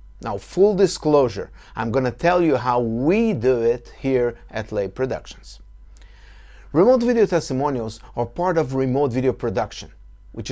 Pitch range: 115-170 Hz